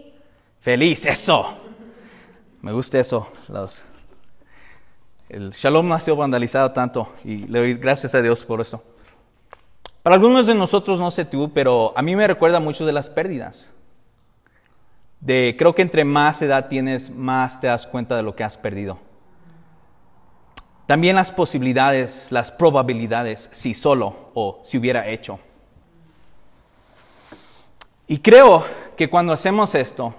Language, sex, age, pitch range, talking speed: Spanish, male, 30-49, 120-190 Hz, 140 wpm